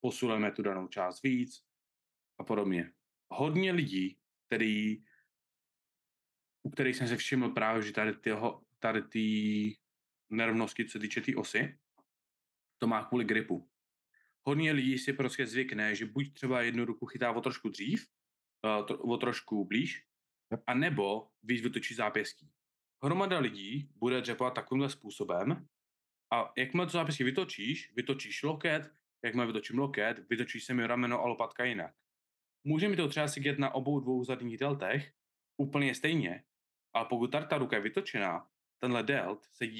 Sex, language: male, Czech